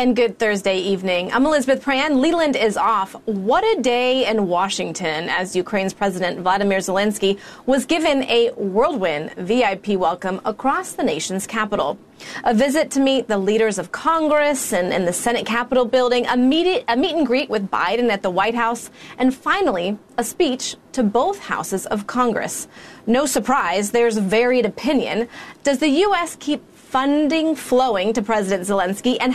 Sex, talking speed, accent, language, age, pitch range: female, 165 wpm, American, English, 30-49, 210-275 Hz